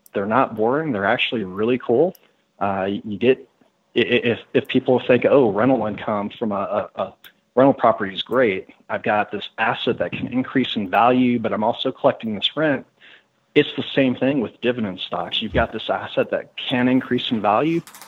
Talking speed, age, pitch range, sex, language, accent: 185 wpm, 40-59, 110-130 Hz, male, English, American